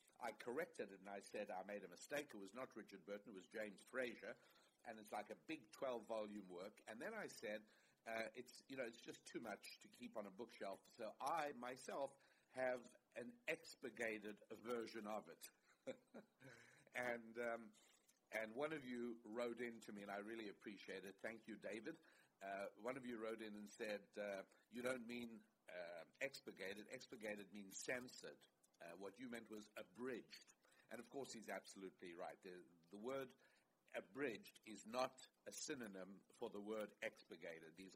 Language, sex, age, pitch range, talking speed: English, male, 60-79, 95-120 Hz, 175 wpm